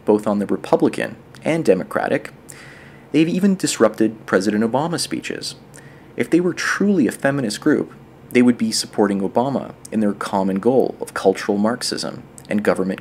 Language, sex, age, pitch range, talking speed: English, male, 30-49, 105-145 Hz, 150 wpm